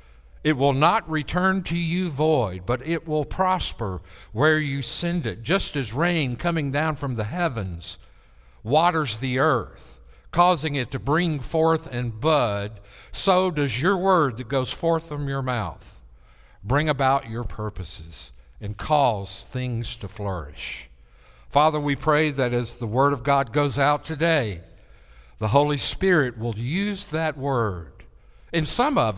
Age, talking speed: 60-79, 150 wpm